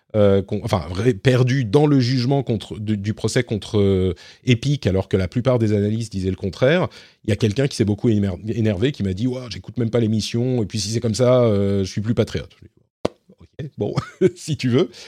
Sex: male